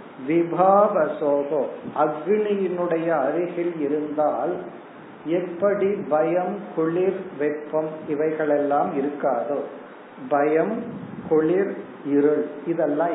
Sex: male